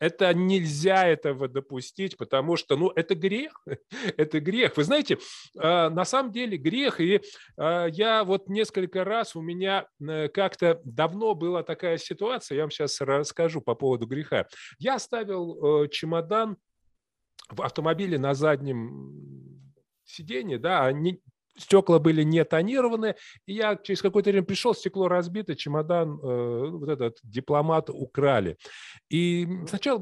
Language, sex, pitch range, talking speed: Russian, male, 150-195 Hz, 135 wpm